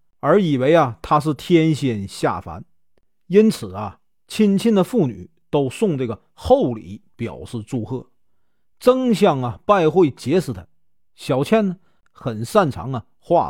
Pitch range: 115-190 Hz